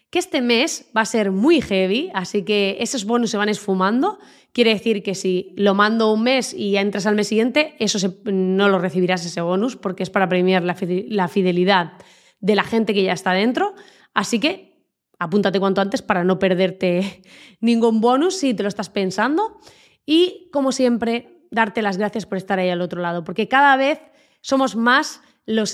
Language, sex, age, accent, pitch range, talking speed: Spanish, female, 20-39, Spanish, 200-250 Hz, 190 wpm